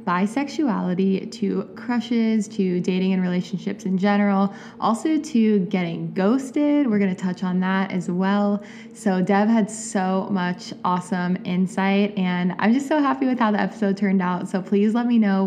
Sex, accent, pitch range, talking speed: female, American, 180-210 Hz, 170 wpm